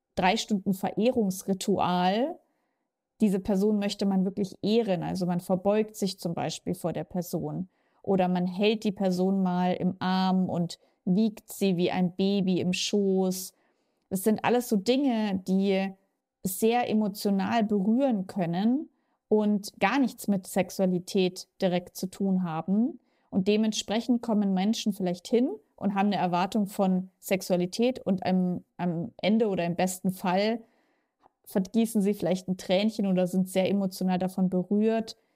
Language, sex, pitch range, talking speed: German, female, 185-220 Hz, 140 wpm